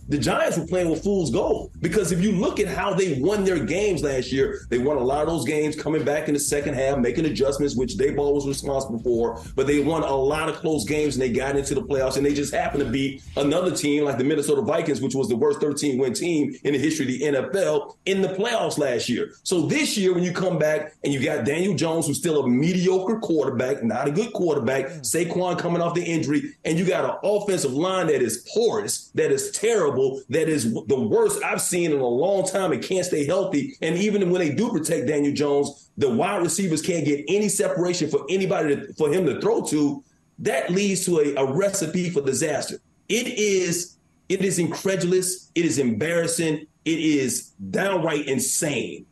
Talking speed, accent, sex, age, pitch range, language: 215 wpm, American, male, 30-49, 145-190 Hz, English